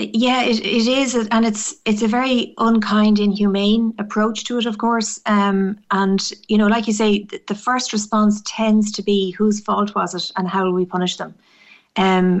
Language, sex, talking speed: English, female, 195 wpm